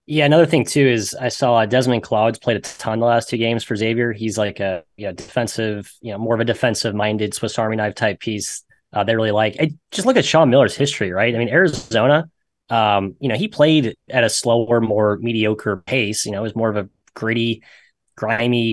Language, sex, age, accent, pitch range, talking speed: English, male, 20-39, American, 105-125 Hz, 215 wpm